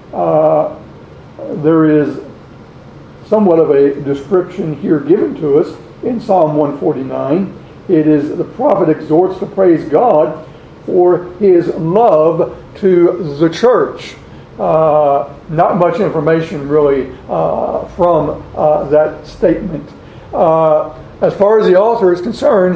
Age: 60-79